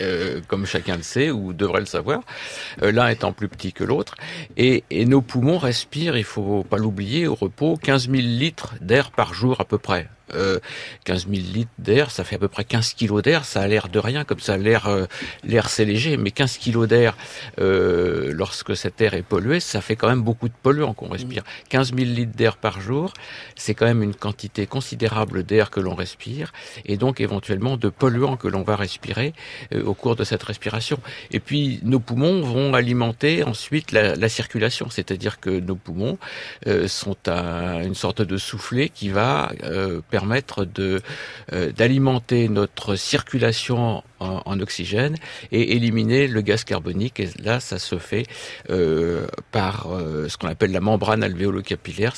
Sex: male